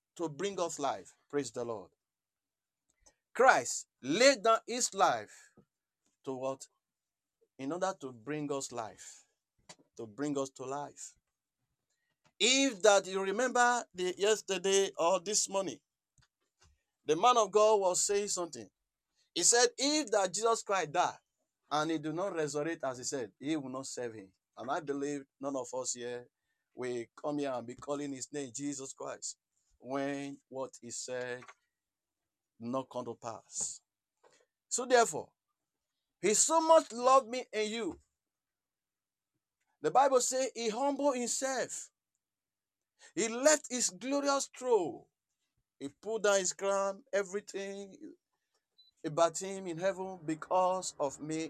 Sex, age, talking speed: male, 50-69, 140 wpm